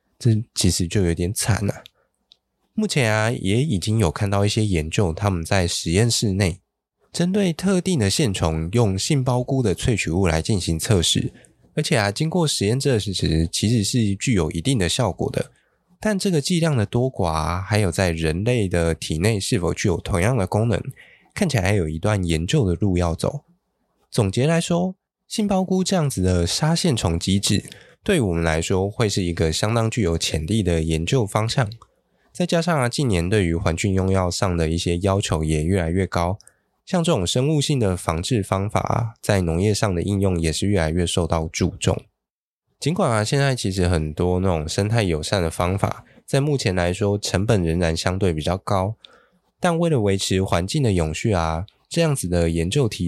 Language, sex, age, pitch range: Chinese, male, 20-39, 85-125 Hz